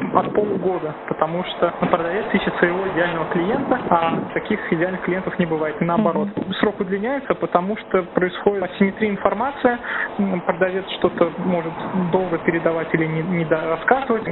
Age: 20-39